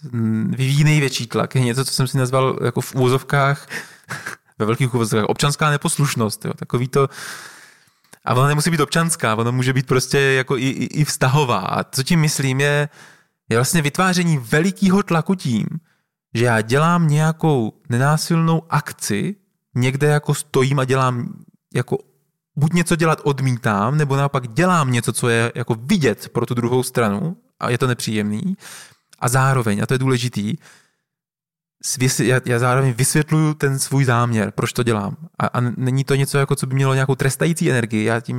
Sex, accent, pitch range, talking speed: male, native, 125-155 Hz, 170 wpm